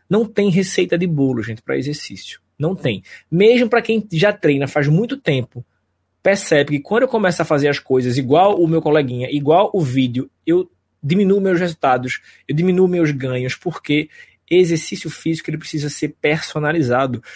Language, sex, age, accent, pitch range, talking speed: Portuguese, male, 20-39, Brazilian, 130-170 Hz, 170 wpm